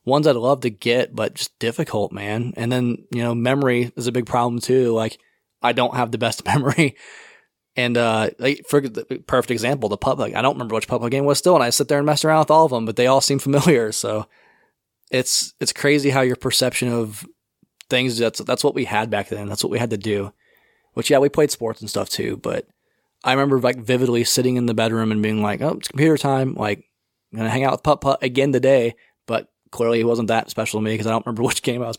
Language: English